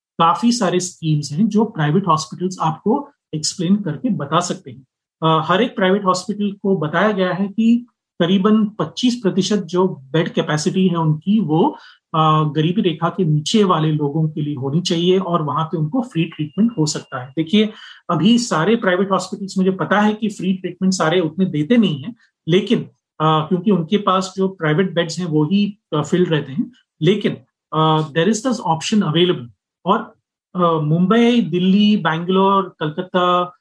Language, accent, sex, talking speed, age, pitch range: Hindi, native, male, 165 wpm, 30-49, 160-205 Hz